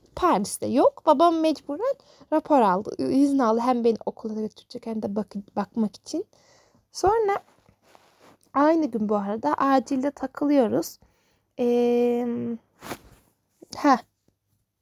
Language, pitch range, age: Turkish, 235-330 Hz, 10-29